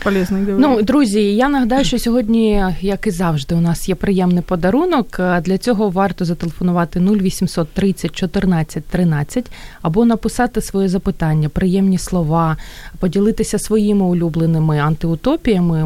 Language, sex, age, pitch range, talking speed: Ukrainian, female, 20-39, 165-215 Hz, 120 wpm